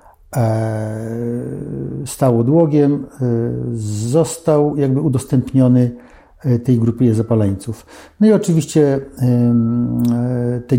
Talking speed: 65 wpm